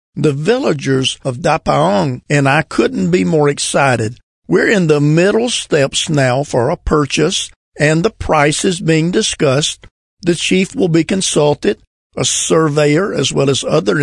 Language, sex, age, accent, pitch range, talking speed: English, male, 50-69, American, 135-170 Hz, 155 wpm